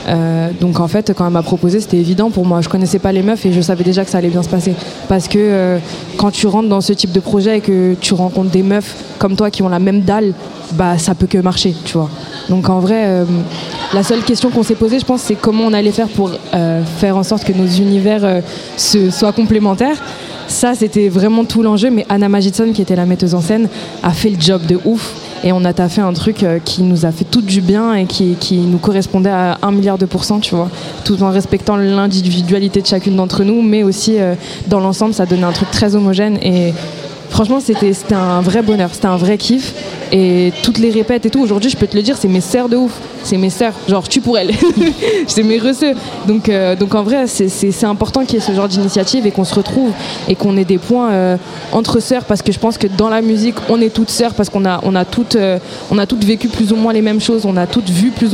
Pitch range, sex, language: 185-220 Hz, female, French